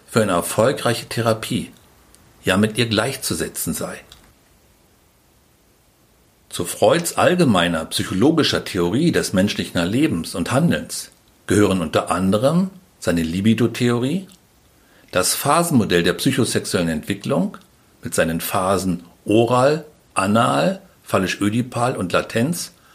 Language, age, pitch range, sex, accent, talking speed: German, 60-79, 95-135 Hz, male, German, 95 wpm